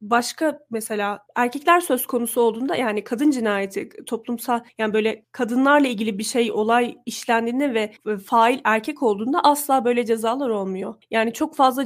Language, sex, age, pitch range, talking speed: Turkish, female, 30-49, 215-255 Hz, 145 wpm